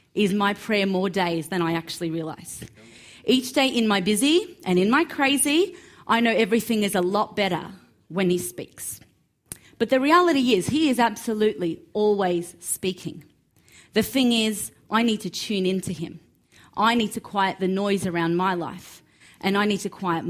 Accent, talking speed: Australian, 180 wpm